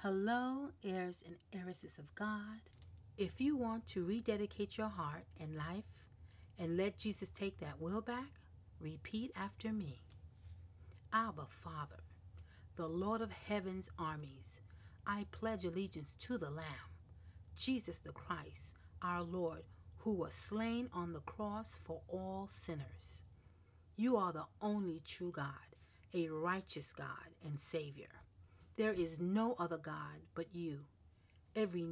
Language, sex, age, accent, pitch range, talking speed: English, female, 40-59, American, 130-215 Hz, 135 wpm